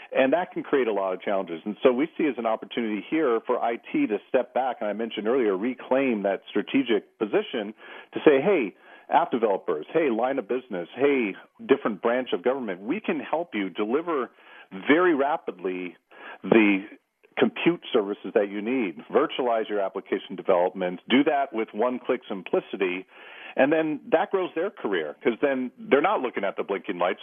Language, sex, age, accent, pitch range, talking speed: English, male, 40-59, American, 100-130 Hz, 175 wpm